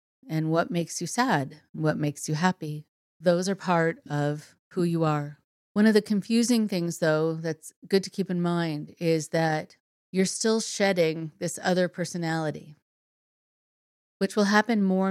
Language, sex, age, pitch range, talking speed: English, female, 40-59, 155-195 Hz, 160 wpm